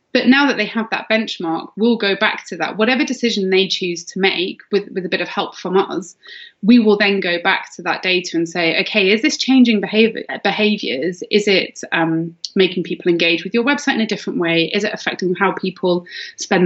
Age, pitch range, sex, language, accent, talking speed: 20-39, 180-235 Hz, female, English, British, 215 wpm